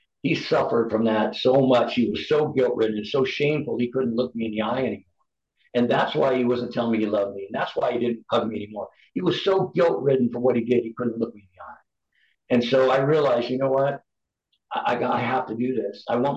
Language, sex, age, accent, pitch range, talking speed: English, male, 60-79, American, 115-140 Hz, 260 wpm